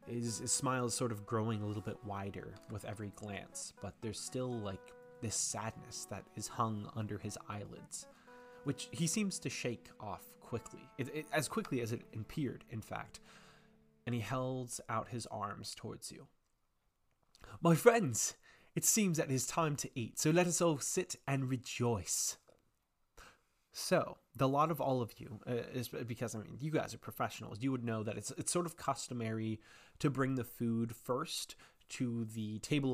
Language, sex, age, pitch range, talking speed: English, male, 20-39, 110-130 Hz, 180 wpm